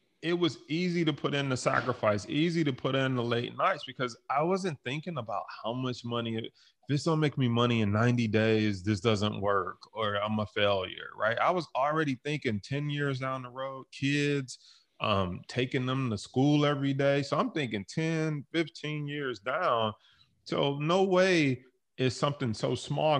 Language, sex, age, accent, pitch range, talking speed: English, male, 30-49, American, 110-140 Hz, 180 wpm